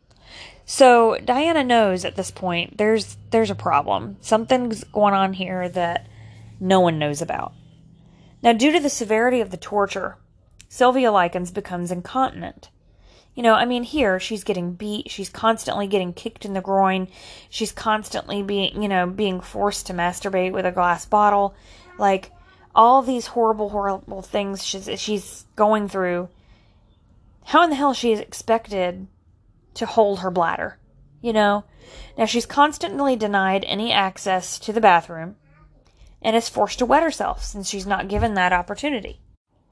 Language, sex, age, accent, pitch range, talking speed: English, female, 20-39, American, 185-225 Hz, 155 wpm